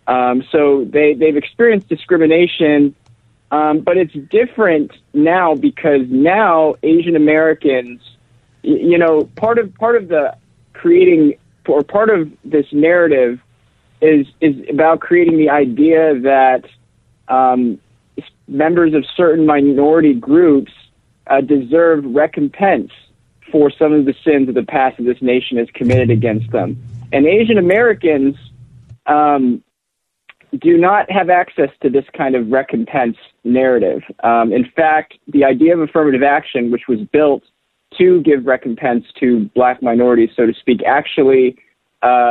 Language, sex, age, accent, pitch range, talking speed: English, male, 40-59, American, 125-160 Hz, 135 wpm